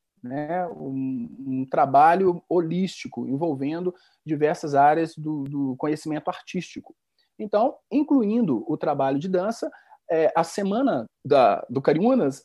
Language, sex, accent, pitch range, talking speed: Portuguese, male, Brazilian, 155-210 Hz, 115 wpm